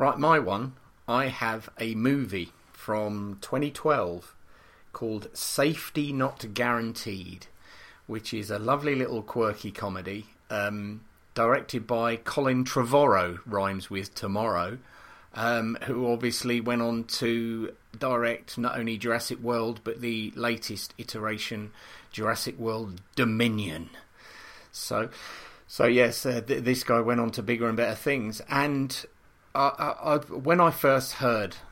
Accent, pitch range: British, 100-120 Hz